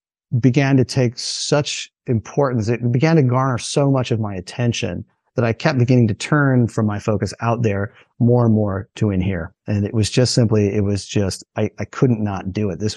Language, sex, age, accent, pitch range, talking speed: English, male, 30-49, American, 105-125 Hz, 215 wpm